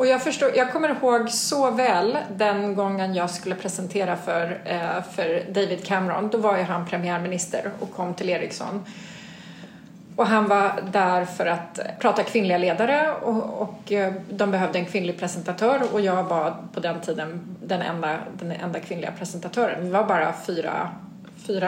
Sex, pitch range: female, 180-235 Hz